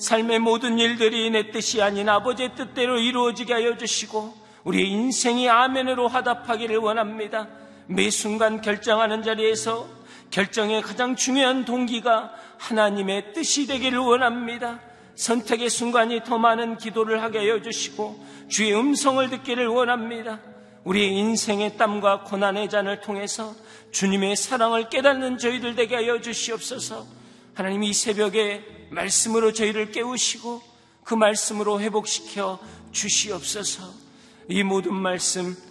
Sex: male